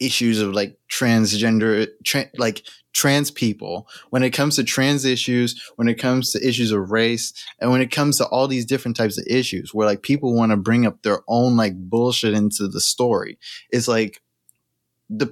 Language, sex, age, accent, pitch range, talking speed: English, male, 20-39, American, 115-140 Hz, 190 wpm